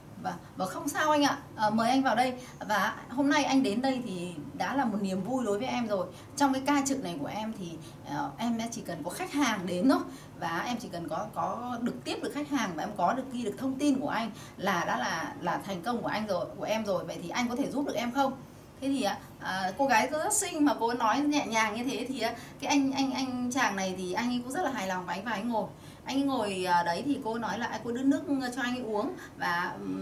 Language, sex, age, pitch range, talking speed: Vietnamese, female, 20-39, 205-270 Hz, 270 wpm